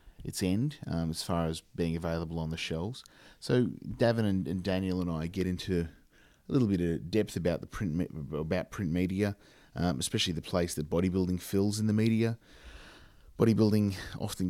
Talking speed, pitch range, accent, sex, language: 180 wpm, 80-95 Hz, Australian, male, English